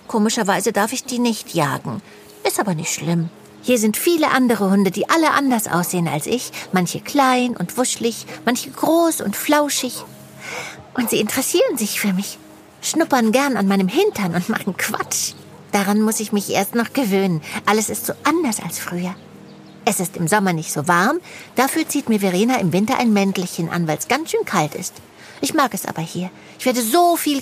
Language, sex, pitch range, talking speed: German, female, 175-250 Hz, 190 wpm